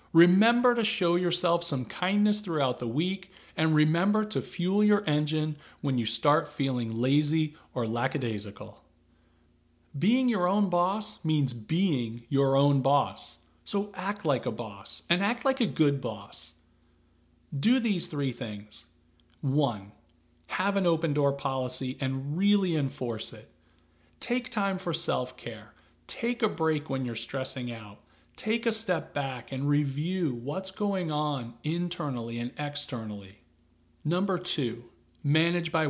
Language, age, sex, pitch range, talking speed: English, 40-59, male, 110-175 Hz, 135 wpm